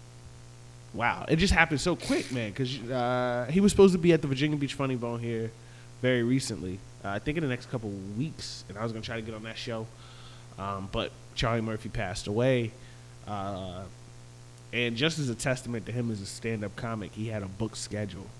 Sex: male